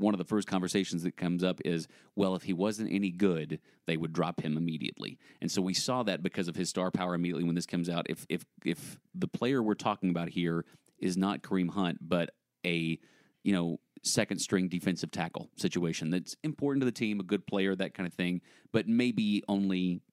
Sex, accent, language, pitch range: male, American, English, 85-100 Hz